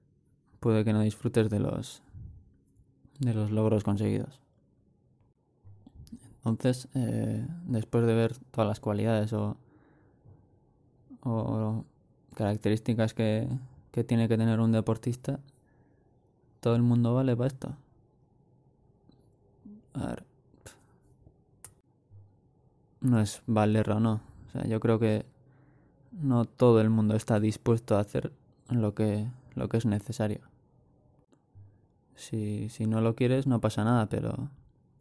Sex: male